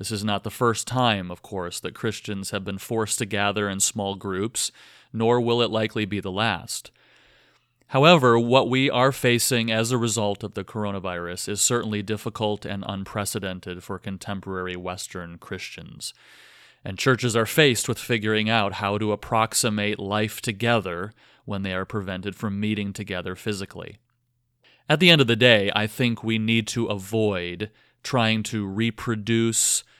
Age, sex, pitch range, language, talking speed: 30-49, male, 100-120 Hz, English, 160 wpm